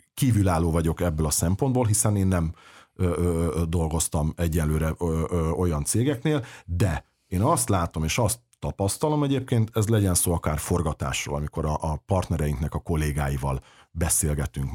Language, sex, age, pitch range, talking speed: Hungarian, male, 50-69, 80-110 Hz, 155 wpm